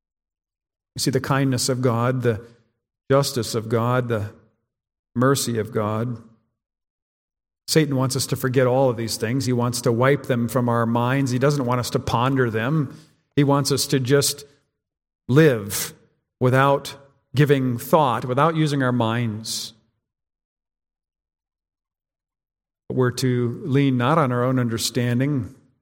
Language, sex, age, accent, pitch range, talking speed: English, male, 50-69, American, 120-140 Hz, 135 wpm